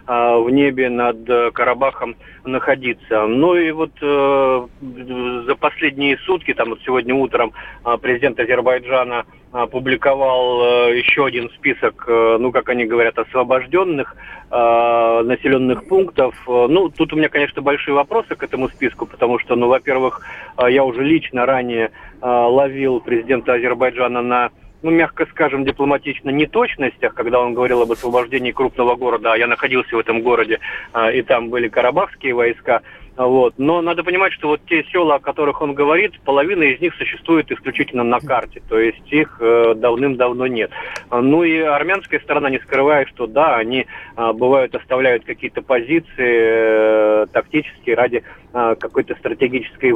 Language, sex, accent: Russian, male, native